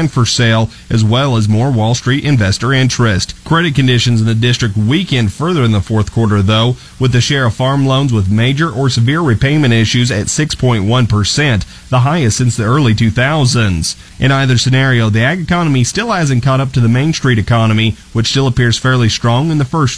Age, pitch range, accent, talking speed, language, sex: 30-49, 115-140 Hz, American, 195 wpm, English, male